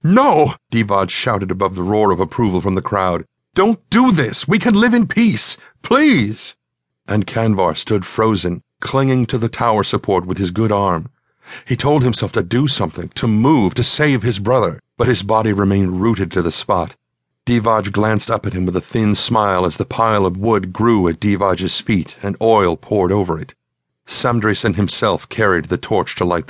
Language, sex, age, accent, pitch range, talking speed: English, male, 50-69, American, 95-120 Hz, 190 wpm